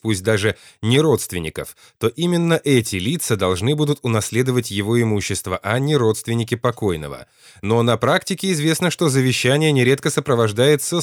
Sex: male